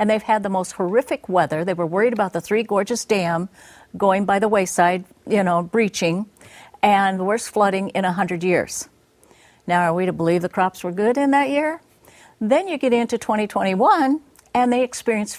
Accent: American